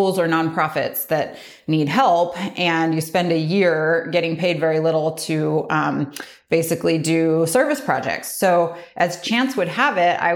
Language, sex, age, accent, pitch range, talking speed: English, female, 30-49, American, 165-205 Hz, 155 wpm